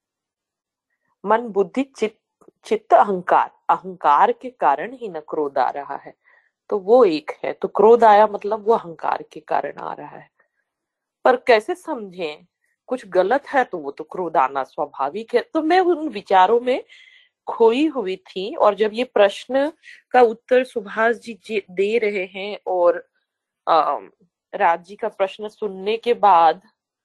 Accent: native